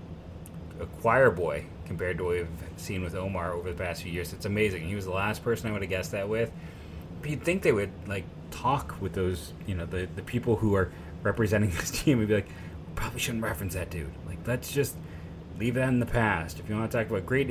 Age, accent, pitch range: 30-49, American, 85-115 Hz